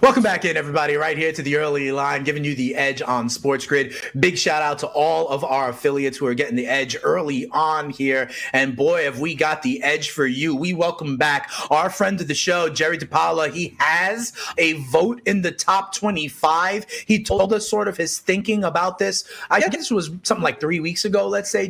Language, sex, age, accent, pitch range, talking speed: English, male, 30-49, American, 155-235 Hz, 220 wpm